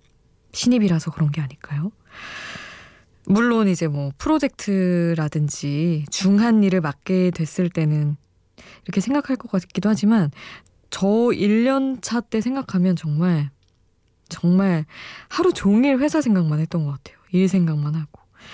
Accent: native